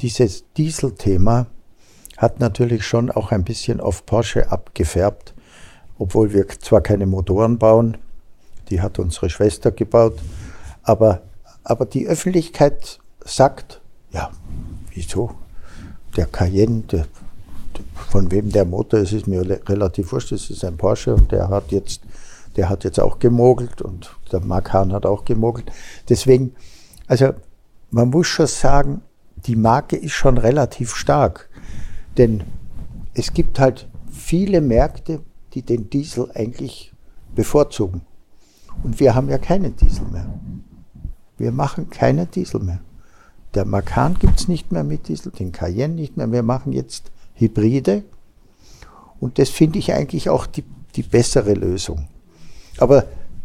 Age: 60-79